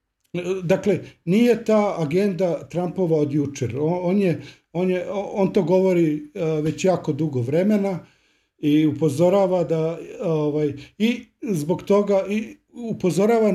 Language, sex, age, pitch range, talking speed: Croatian, male, 50-69, 150-190 Hz, 80 wpm